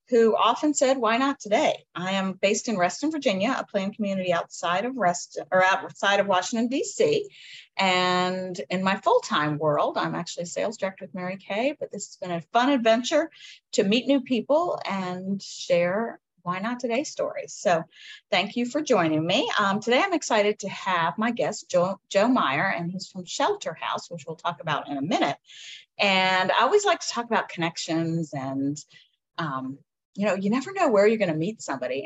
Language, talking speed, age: English, 190 wpm, 40-59